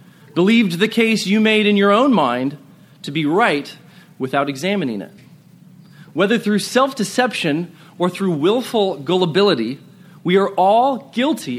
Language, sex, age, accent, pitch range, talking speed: English, male, 30-49, American, 170-215 Hz, 135 wpm